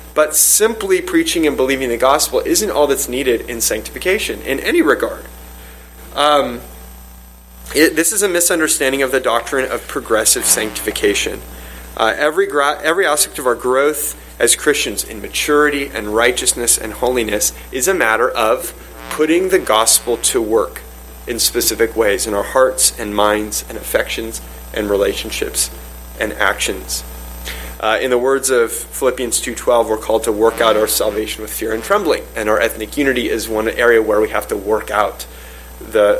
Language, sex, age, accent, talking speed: English, male, 30-49, American, 165 wpm